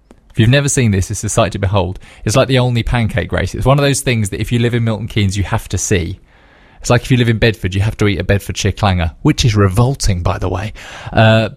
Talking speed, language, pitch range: 275 wpm, English, 100-130 Hz